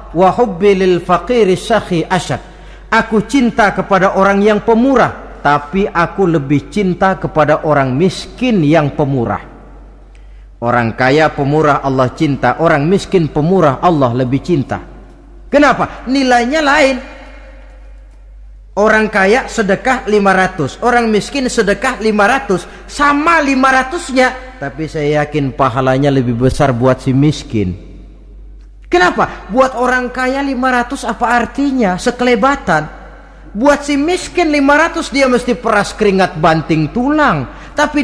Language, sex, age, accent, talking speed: Indonesian, male, 40-59, native, 105 wpm